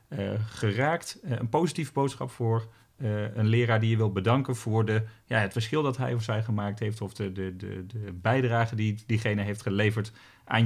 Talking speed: 205 wpm